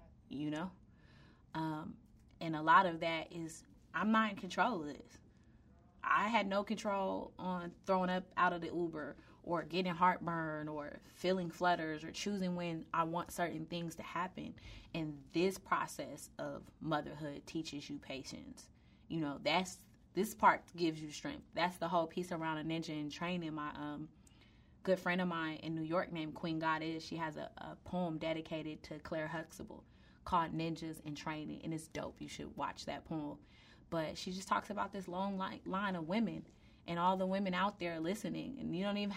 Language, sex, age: English, female, 20-39